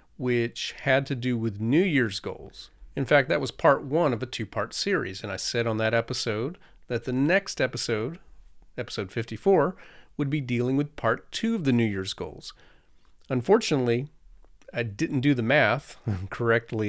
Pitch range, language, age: 105-135 Hz, English, 40-59